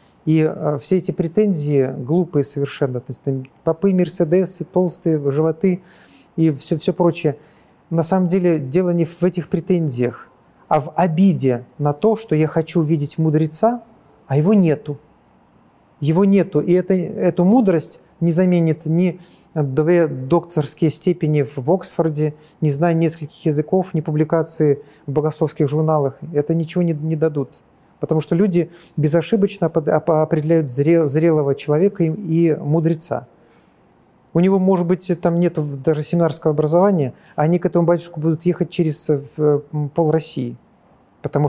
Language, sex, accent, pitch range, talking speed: Russian, male, native, 150-175 Hz, 135 wpm